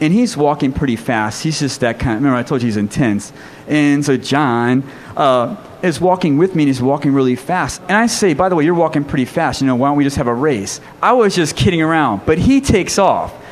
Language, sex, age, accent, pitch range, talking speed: English, male, 30-49, American, 130-185 Hz, 255 wpm